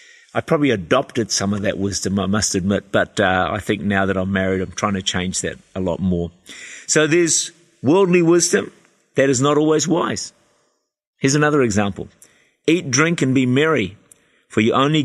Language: English